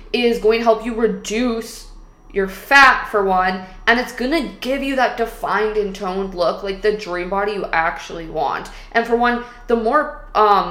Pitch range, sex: 195-230 Hz, female